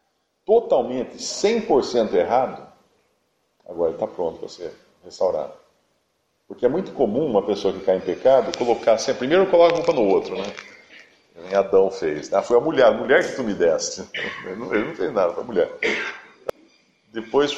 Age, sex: 50-69, male